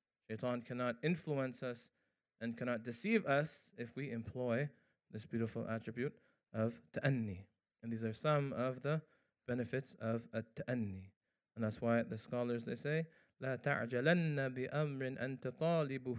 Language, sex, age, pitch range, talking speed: English, male, 20-39, 125-165 Hz, 120 wpm